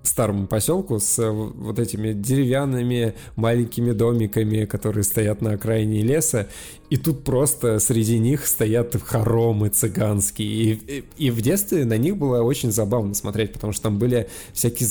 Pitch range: 105-125 Hz